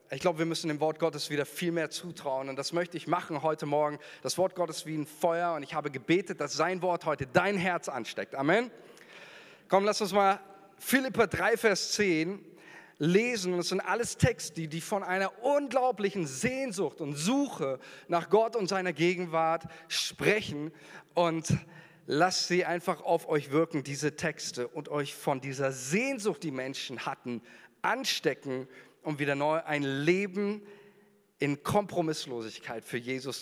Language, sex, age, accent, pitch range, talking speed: German, male, 40-59, German, 150-205 Hz, 165 wpm